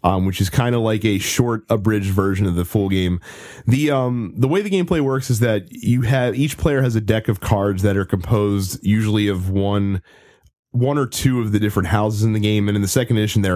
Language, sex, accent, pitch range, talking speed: English, male, American, 100-125 Hz, 240 wpm